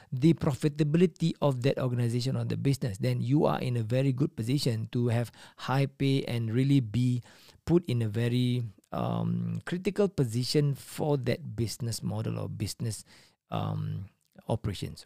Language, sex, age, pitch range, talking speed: Malay, male, 40-59, 115-155 Hz, 150 wpm